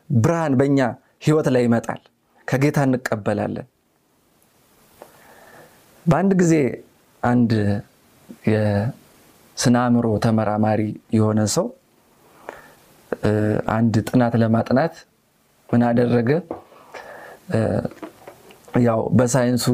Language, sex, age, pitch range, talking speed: Amharic, male, 30-49, 115-135 Hz, 60 wpm